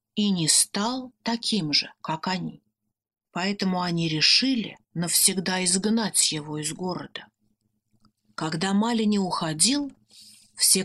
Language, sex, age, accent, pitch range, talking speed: Russian, female, 30-49, native, 165-255 Hz, 105 wpm